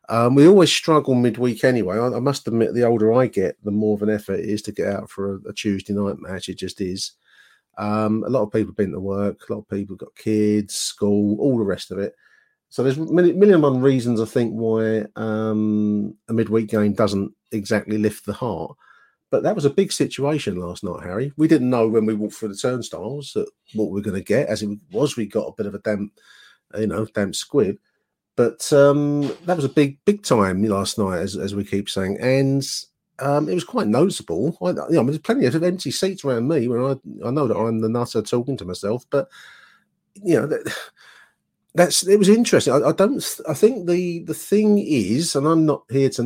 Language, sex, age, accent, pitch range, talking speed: English, male, 40-59, British, 105-140 Hz, 230 wpm